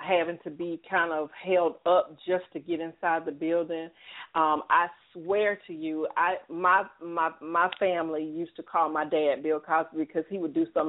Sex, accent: female, American